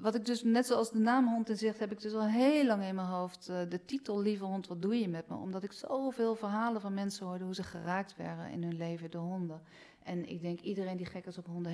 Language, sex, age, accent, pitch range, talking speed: Dutch, female, 40-59, Dutch, 180-220 Hz, 270 wpm